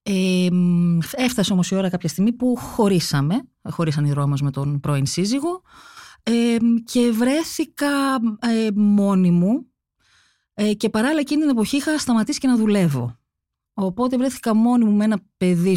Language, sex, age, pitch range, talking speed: Greek, female, 30-49, 165-250 Hz, 155 wpm